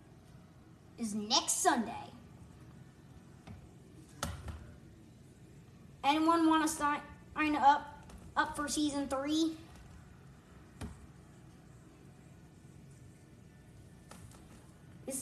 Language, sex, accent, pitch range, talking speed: English, male, American, 230-305 Hz, 50 wpm